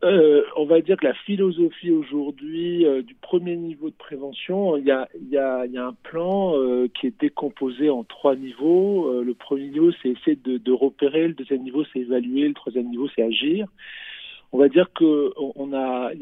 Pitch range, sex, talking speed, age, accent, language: 125-165 Hz, male, 205 wpm, 50-69, French, Italian